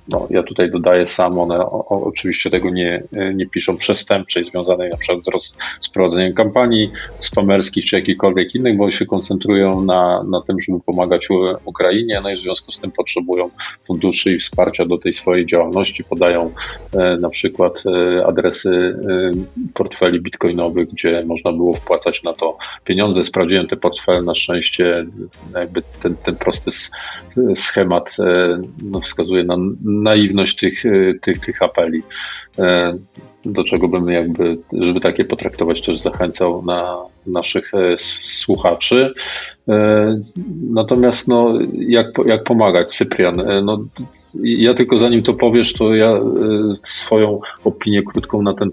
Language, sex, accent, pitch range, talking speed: Polish, male, native, 90-105 Hz, 140 wpm